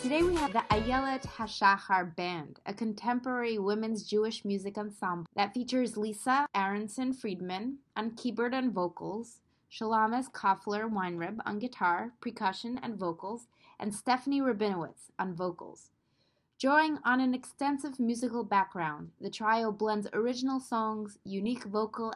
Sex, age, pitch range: female, 20-39, 195-240 Hz